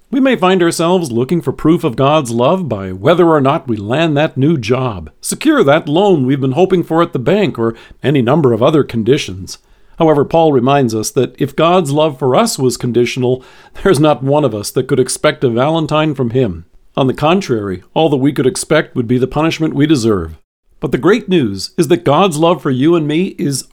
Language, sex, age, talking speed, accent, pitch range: English, male, 50-69, 215 wpm, American, 130-180 Hz